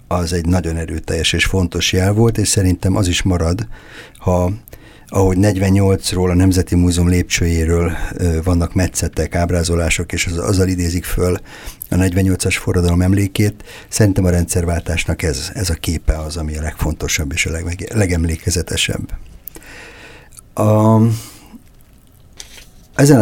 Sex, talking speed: male, 130 wpm